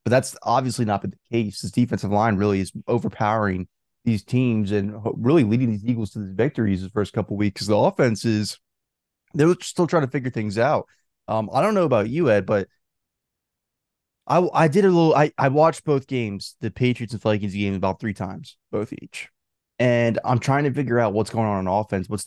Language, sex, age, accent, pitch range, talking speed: English, male, 20-39, American, 100-130 Hz, 215 wpm